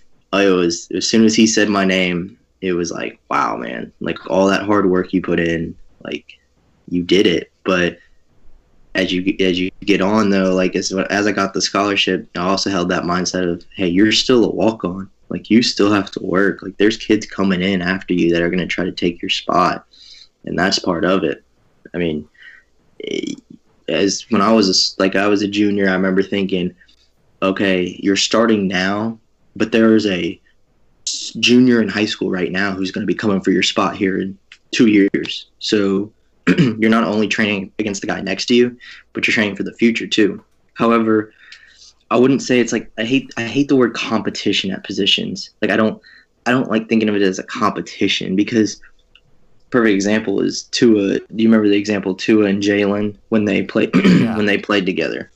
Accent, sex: American, male